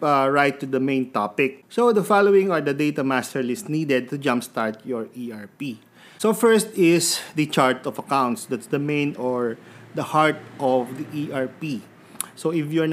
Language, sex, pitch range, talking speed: English, male, 130-160 Hz, 180 wpm